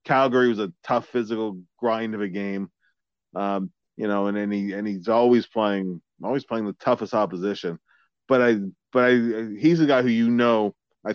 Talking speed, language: 190 wpm, English